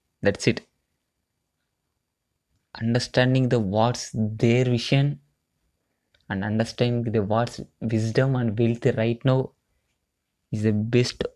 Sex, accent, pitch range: male, Indian, 115-130 Hz